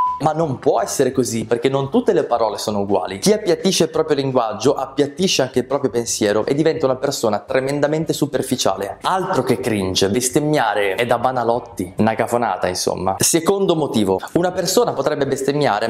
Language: Italian